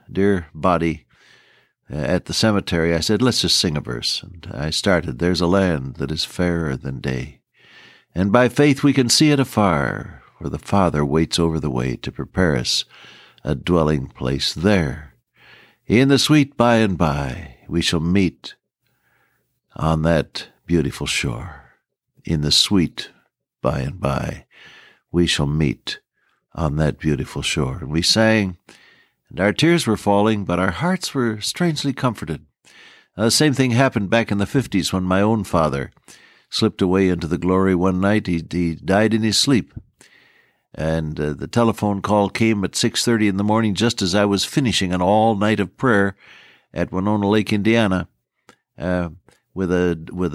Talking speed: 165 wpm